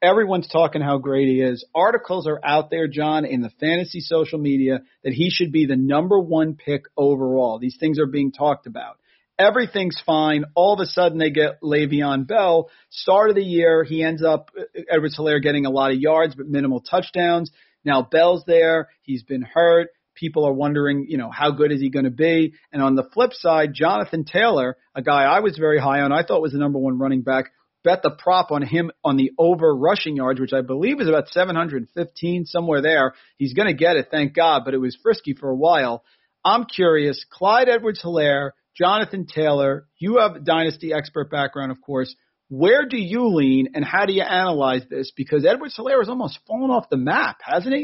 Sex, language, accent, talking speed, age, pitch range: male, English, American, 205 wpm, 40-59, 140-175 Hz